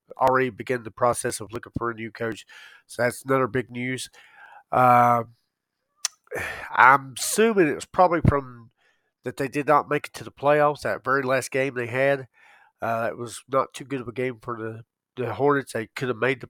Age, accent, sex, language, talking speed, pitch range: 40-59, American, male, English, 200 wpm, 120-145 Hz